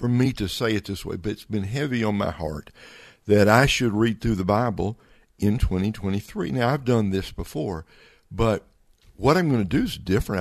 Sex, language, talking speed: male, English, 210 wpm